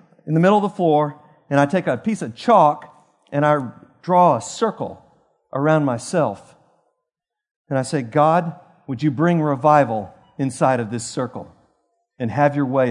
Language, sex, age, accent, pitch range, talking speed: English, male, 40-59, American, 145-180 Hz, 165 wpm